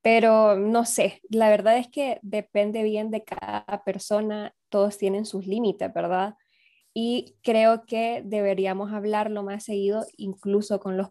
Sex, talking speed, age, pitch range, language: female, 145 wpm, 10-29, 195-230 Hz, Spanish